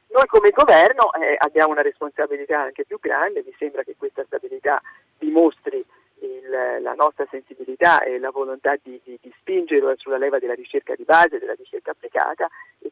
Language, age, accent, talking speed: Italian, 40-59, native, 170 wpm